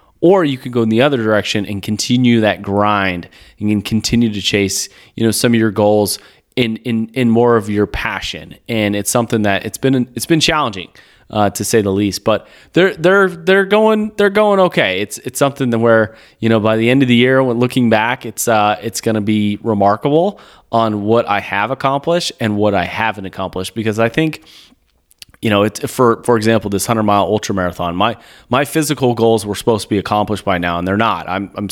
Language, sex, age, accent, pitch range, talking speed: English, male, 30-49, American, 105-120 Hz, 220 wpm